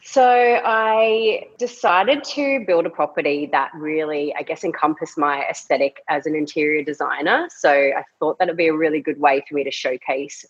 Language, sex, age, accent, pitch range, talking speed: English, female, 30-49, Australian, 145-180 Hz, 175 wpm